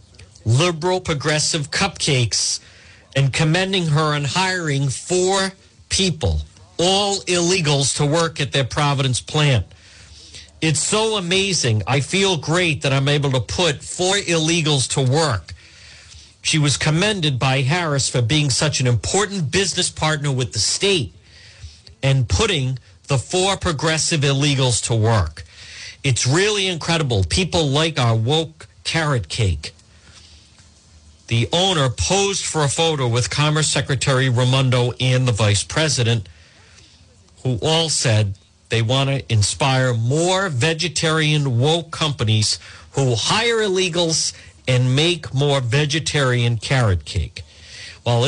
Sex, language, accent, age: male, English, American, 50-69